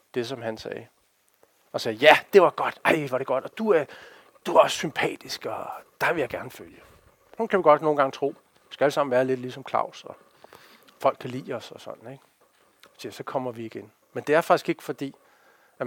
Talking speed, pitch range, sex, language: 230 wpm, 130-175 Hz, male, Danish